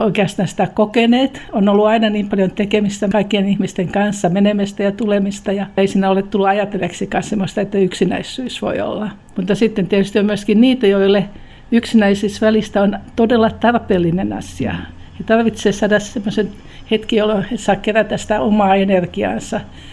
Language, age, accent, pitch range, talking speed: Finnish, 60-79, native, 195-225 Hz, 150 wpm